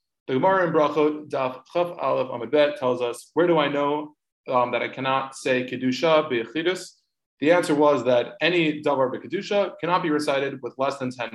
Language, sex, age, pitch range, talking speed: English, male, 20-39, 135-175 Hz, 185 wpm